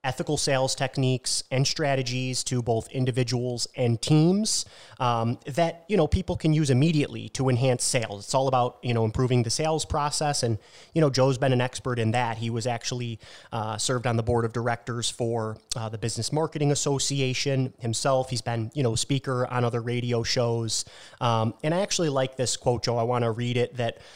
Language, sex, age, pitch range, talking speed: English, male, 30-49, 115-135 Hz, 195 wpm